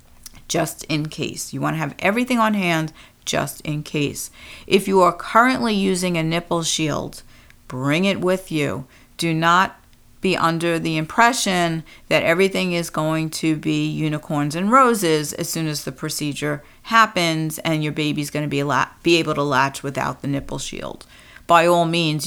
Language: English